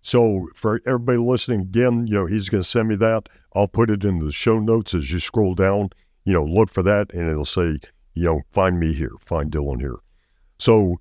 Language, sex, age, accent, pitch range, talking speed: English, male, 50-69, American, 80-110 Hz, 225 wpm